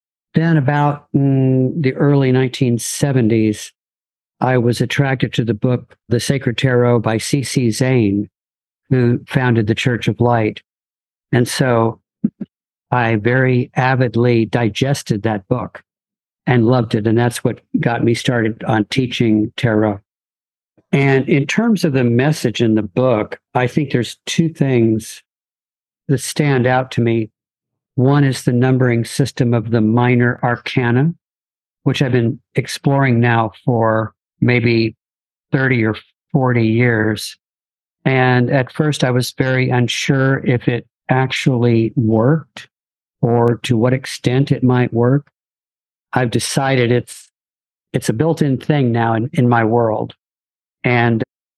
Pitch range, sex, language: 115-135 Hz, male, English